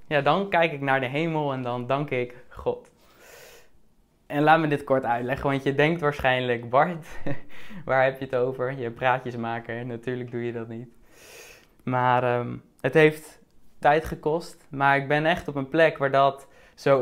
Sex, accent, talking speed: male, Dutch, 180 wpm